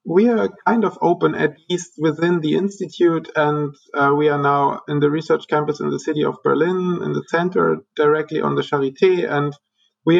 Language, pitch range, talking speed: English, 135-175 Hz, 195 wpm